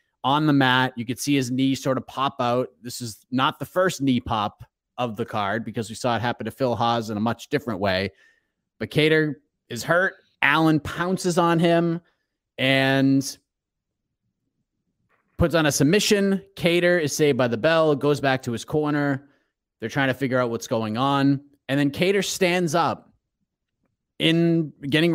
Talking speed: 175 wpm